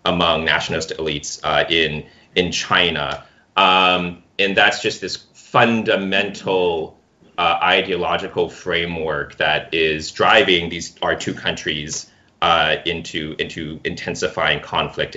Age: 30-49